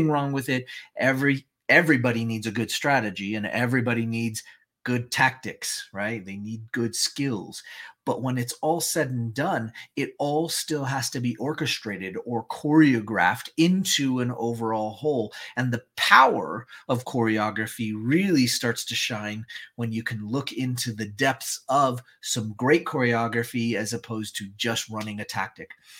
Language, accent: English, American